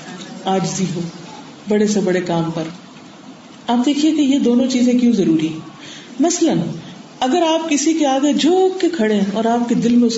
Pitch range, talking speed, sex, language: 215-295 Hz, 190 wpm, female, Urdu